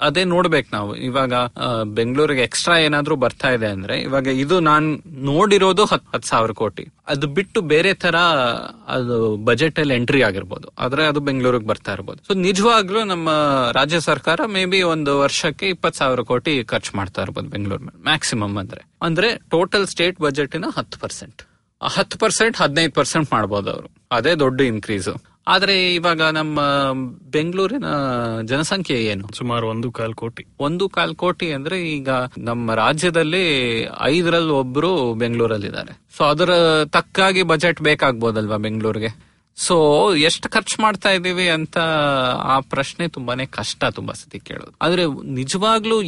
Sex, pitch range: male, 120-170 Hz